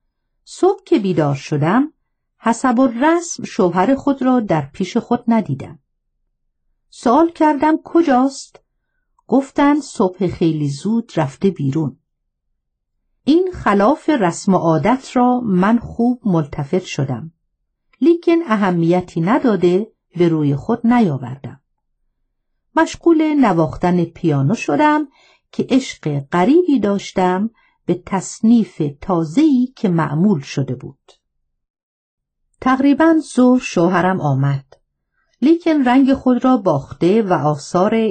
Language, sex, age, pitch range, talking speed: Persian, female, 50-69, 160-255 Hz, 100 wpm